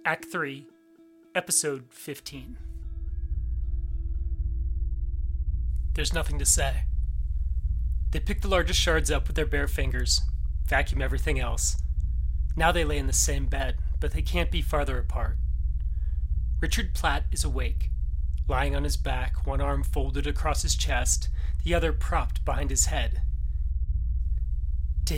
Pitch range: 70-75 Hz